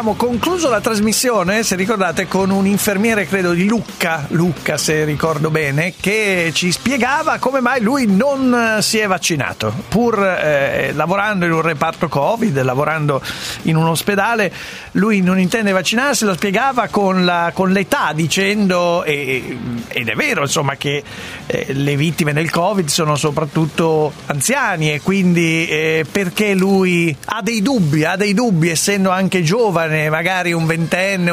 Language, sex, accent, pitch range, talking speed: Italian, male, native, 155-215 Hz, 150 wpm